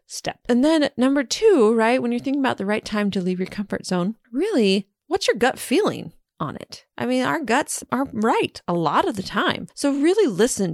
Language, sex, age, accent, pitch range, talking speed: English, female, 30-49, American, 180-245 Hz, 220 wpm